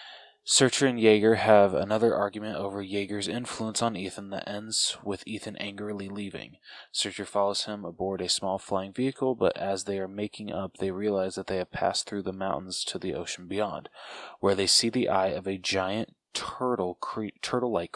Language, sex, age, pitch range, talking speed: English, male, 20-39, 95-115 Hz, 185 wpm